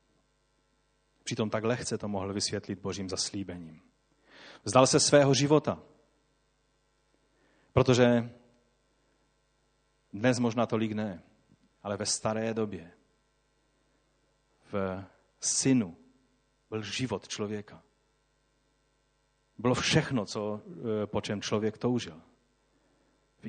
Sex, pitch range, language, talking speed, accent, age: male, 100-130 Hz, Czech, 85 wpm, native, 40-59